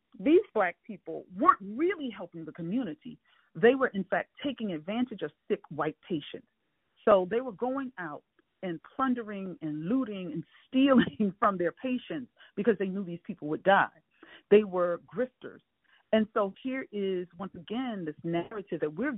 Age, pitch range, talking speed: 40-59, 175-235 Hz, 165 wpm